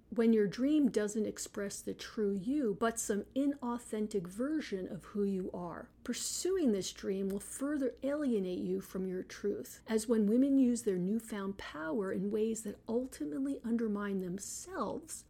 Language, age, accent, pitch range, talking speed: English, 50-69, American, 200-255 Hz, 155 wpm